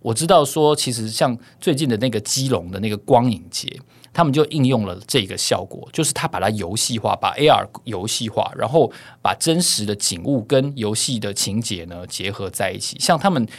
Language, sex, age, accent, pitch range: Chinese, male, 20-39, native, 105-130 Hz